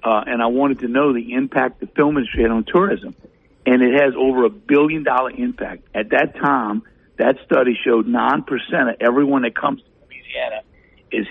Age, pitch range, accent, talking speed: 60-79, 120-150 Hz, American, 185 wpm